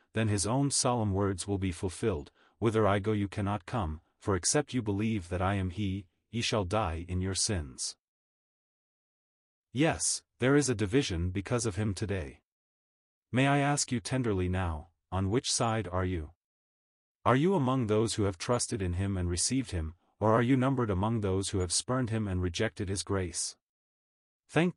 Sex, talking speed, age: male, 180 wpm, 40-59